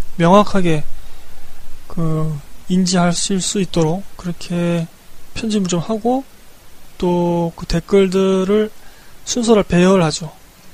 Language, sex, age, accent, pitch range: Korean, male, 20-39, native, 165-195 Hz